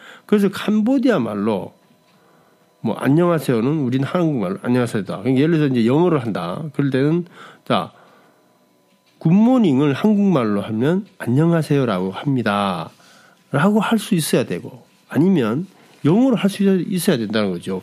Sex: male